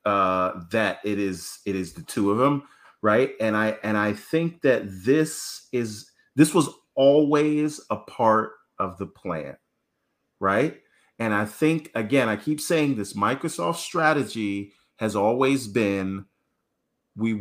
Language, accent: English, American